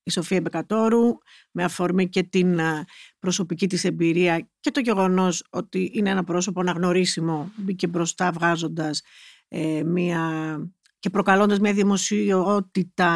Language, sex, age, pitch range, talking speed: Greek, female, 50-69, 165-200 Hz, 125 wpm